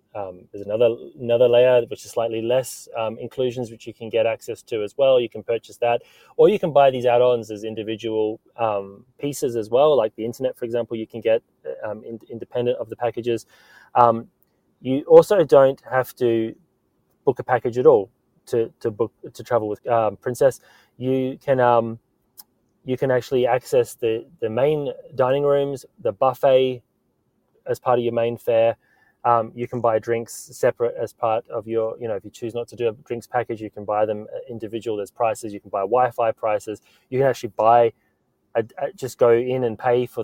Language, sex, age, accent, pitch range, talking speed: English, male, 20-39, Australian, 110-135 Hz, 200 wpm